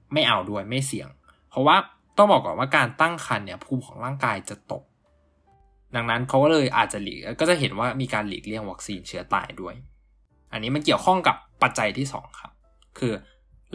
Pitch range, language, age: 105-145 Hz, Thai, 20-39